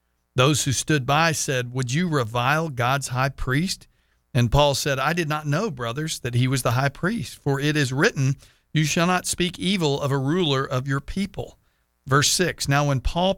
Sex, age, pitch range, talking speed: male, 50-69, 120-165 Hz, 200 wpm